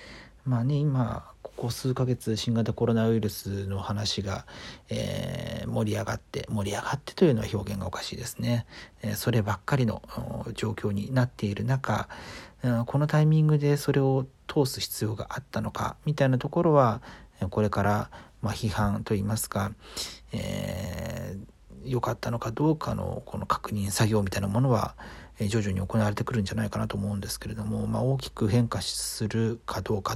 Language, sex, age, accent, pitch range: Japanese, male, 40-59, native, 105-140 Hz